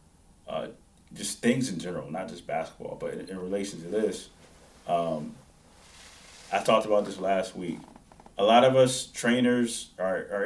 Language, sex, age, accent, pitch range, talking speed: English, male, 30-49, American, 90-115 Hz, 160 wpm